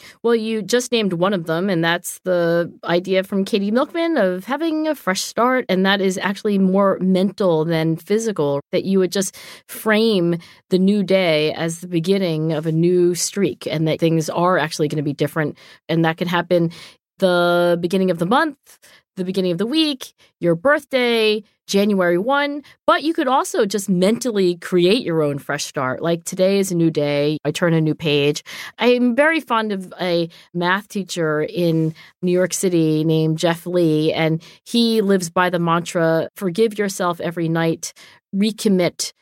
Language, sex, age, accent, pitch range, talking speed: English, female, 40-59, American, 165-205 Hz, 180 wpm